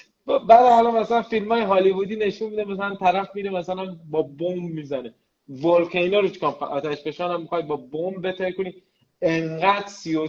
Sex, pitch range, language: male, 150-190 Hz, Persian